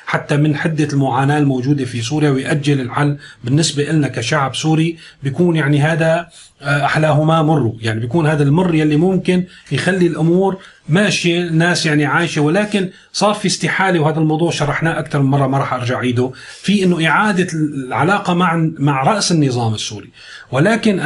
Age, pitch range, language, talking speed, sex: 30-49, 140-170 Hz, Arabic, 155 wpm, male